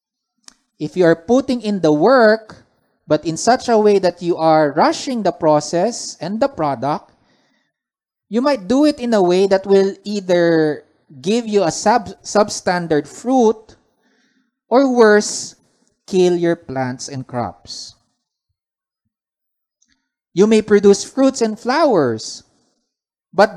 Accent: Filipino